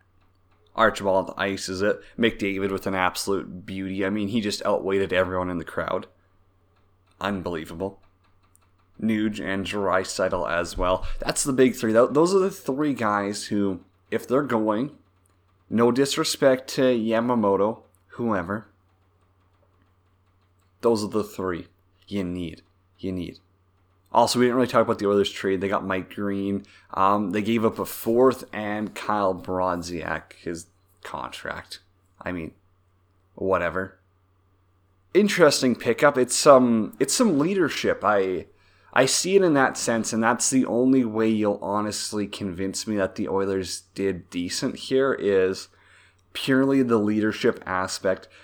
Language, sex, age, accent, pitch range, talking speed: English, male, 30-49, American, 95-110 Hz, 140 wpm